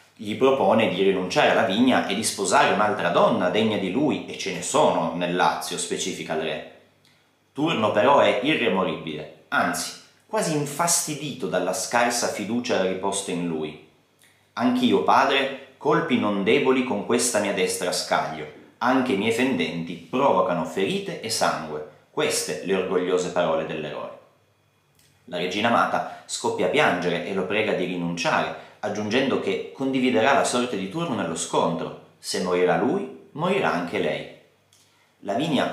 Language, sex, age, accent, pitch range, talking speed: Italian, male, 30-49, native, 85-115 Hz, 145 wpm